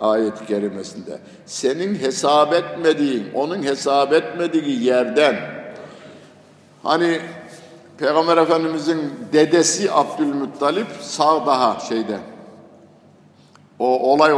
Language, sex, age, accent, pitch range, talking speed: Turkish, male, 60-79, native, 125-165 Hz, 75 wpm